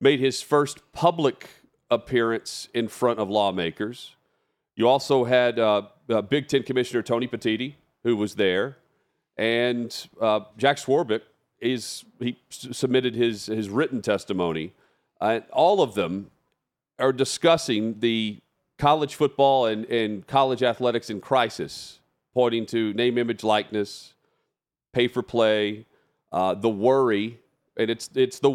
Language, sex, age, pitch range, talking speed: English, male, 40-59, 105-125 Hz, 130 wpm